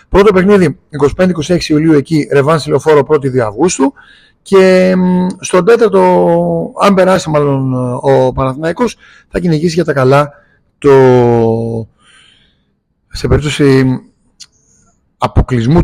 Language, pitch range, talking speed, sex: Greek, 130-175 Hz, 100 wpm, male